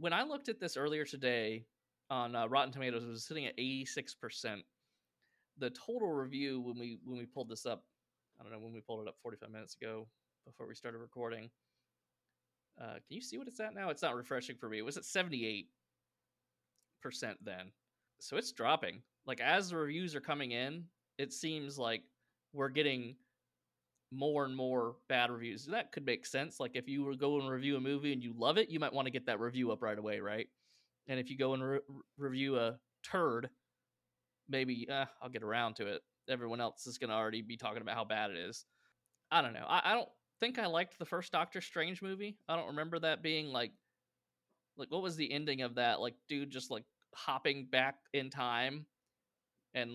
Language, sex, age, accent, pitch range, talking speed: English, male, 20-39, American, 120-150 Hz, 210 wpm